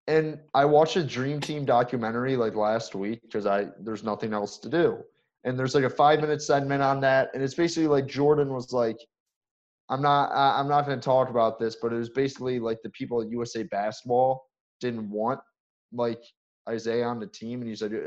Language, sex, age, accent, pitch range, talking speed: English, male, 20-39, American, 115-145 Hz, 200 wpm